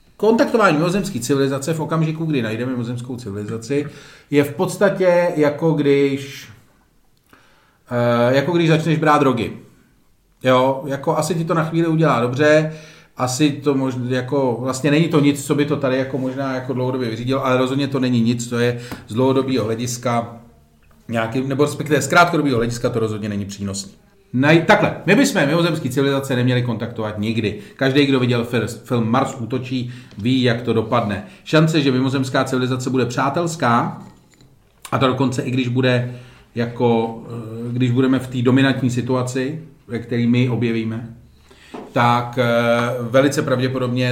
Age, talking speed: 40-59, 140 wpm